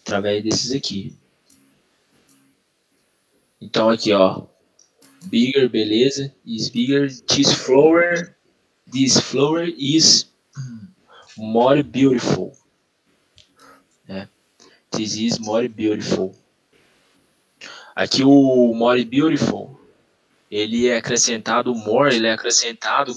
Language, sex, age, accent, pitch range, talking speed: Portuguese, male, 20-39, Brazilian, 110-140 Hz, 85 wpm